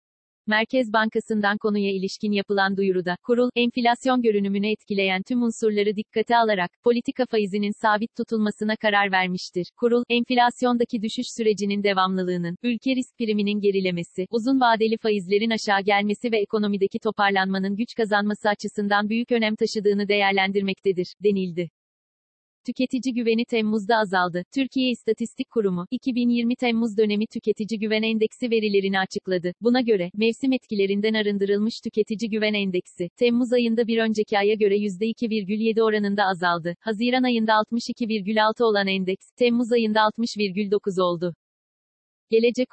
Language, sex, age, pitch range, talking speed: Turkish, female, 40-59, 205-235 Hz, 125 wpm